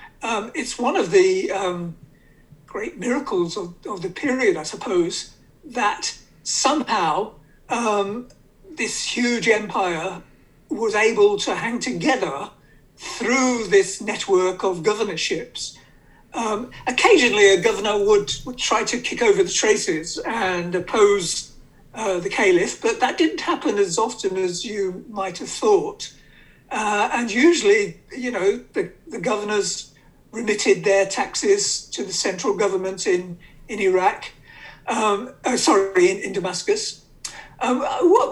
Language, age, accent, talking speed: English, 60-79, British, 130 wpm